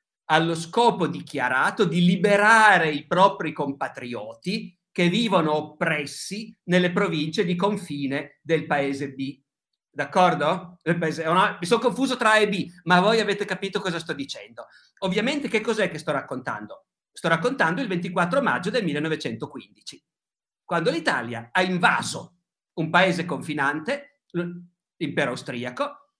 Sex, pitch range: male, 150-195 Hz